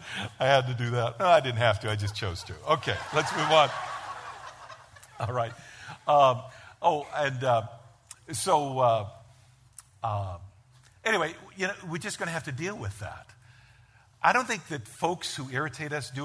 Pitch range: 105-135 Hz